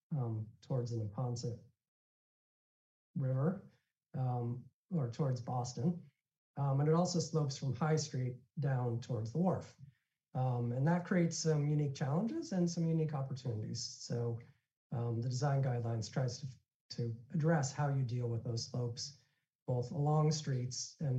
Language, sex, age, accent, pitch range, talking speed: English, male, 40-59, American, 125-155 Hz, 145 wpm